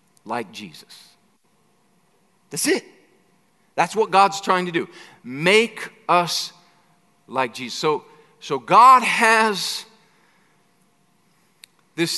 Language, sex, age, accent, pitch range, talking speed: English, male, 40-59, American, 175-200 Hz, 95 wpm